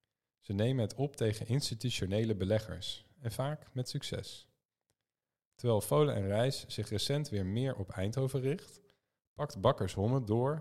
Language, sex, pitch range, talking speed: Dutch, male, 100-135 Hz, 145 wpm